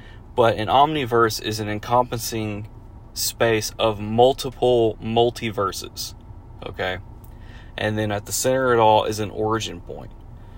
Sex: male